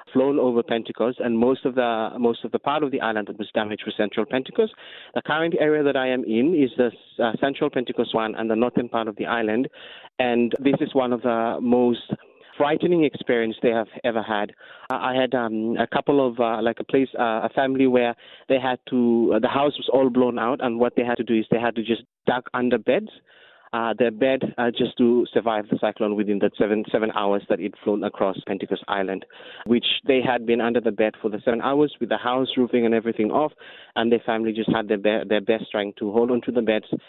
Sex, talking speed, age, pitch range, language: male, 235 wpm, 30-49, 110-125 Hz, English